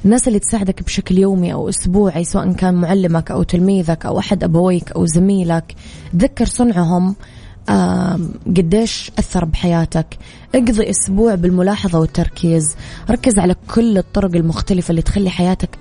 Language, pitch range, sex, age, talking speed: Arabic, 165-195 Hz, female, 20-39, 130 wpm